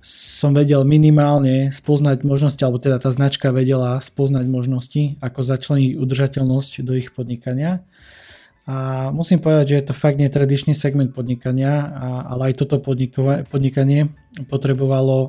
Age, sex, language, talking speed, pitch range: 20-39, male, Slovak, 130 wpm, 130-145 Hz